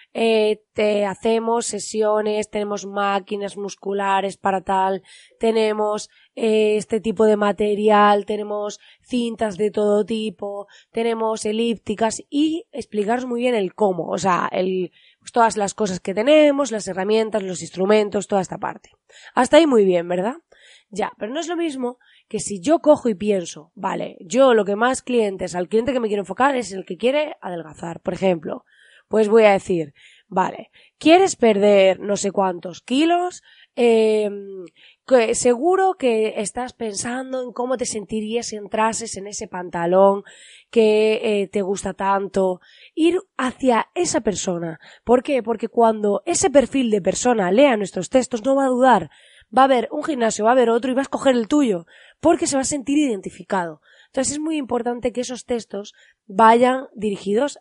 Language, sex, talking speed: Spanish, female, 165 wpm